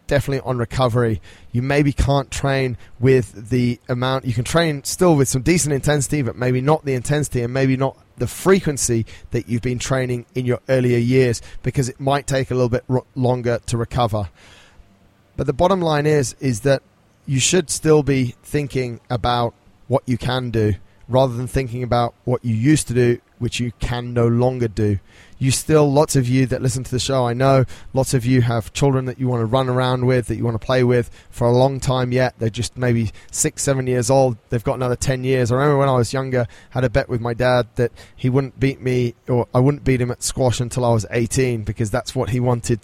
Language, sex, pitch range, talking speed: English, male, 120-135 Hz, 225 wpm